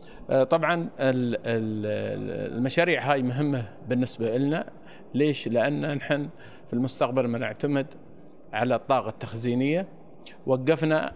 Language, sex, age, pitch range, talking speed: Arabic, male, 50-69, 115-145 Hz, 85 wpm